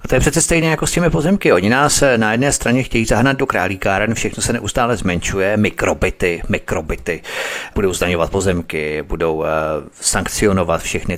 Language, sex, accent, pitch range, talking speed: Czech, male, native, 85-115 Hz, 160 wpm